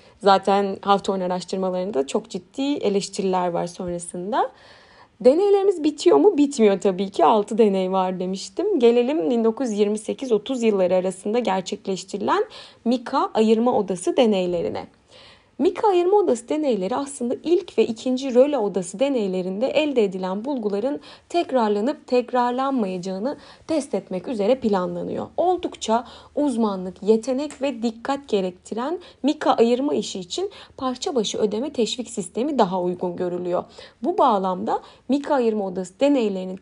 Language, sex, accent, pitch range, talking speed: Turkish, female, native, 195-280 Hz, 115 wpm